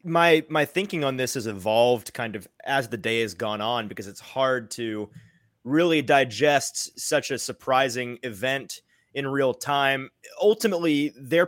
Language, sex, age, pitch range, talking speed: English, male, 20-39, 120-155 Hz, 155 wpm